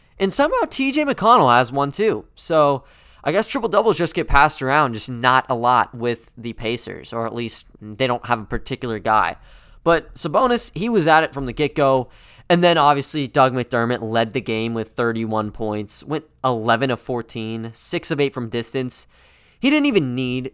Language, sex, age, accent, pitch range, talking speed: English, male, 20-39, American, 120-165 Hz, 185 wpm